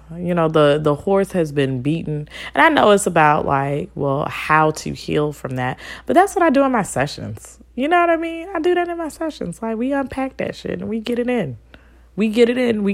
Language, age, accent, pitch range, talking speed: English, 20-39, American, 135-225 Hz, 250 wpm